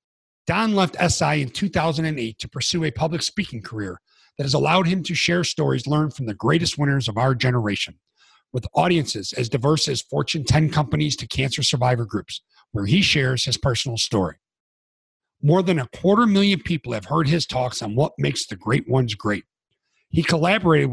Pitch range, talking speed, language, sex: 125-165 Hz, 180 wpm, English, male